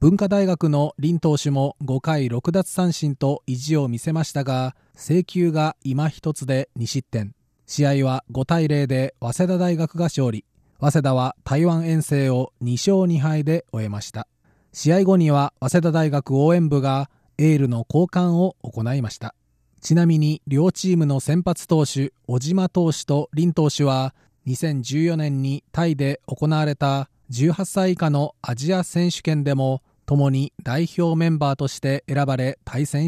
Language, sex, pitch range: Japanese, male, 130-165 Hz